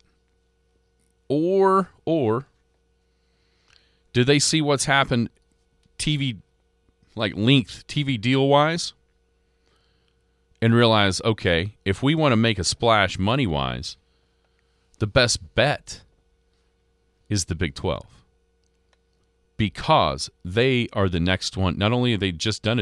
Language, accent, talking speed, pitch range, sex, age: English, American, 110 wpm, 90-110 Hz, male, 40-59